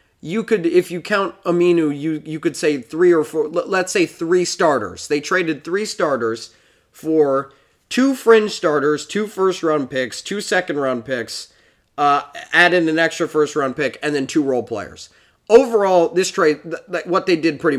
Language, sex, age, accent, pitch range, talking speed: English, male, 20-39, American, 135-175 Hz, 175 wpm